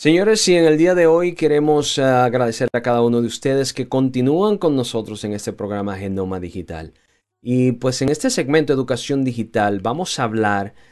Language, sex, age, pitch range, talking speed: Spanish, male, 20-39, 115-145 Hz, 180 wpm